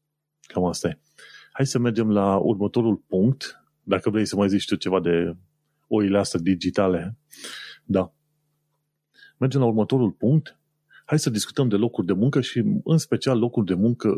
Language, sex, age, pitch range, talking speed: Romanian, male, 30-49, 95-130 Hz, 150 wpm